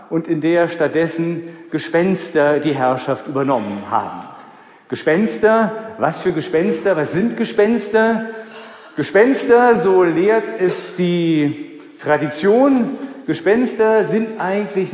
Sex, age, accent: male, 50-69, German